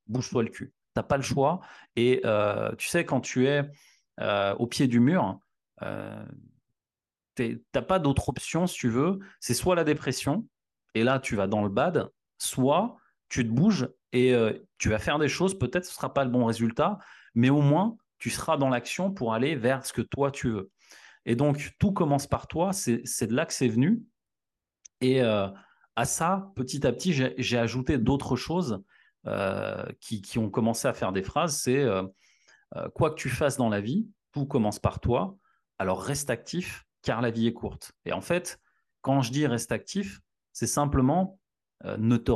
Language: French